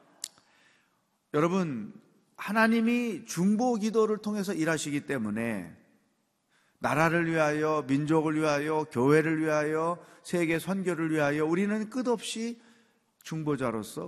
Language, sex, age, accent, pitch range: Korean, male, 40-59, native, 140-185 Hz